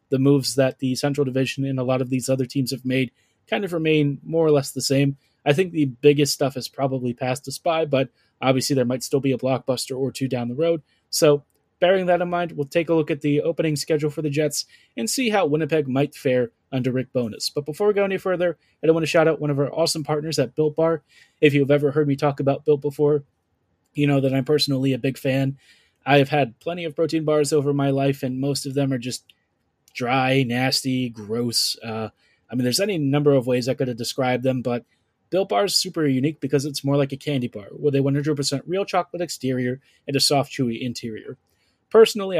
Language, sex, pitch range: English, male, 130-150 Hz